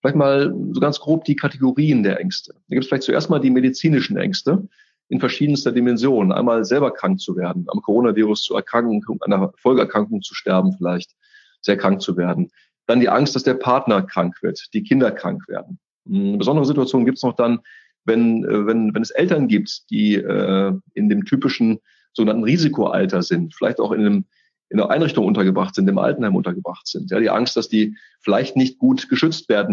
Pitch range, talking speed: 120-180 Hz, 195 wpm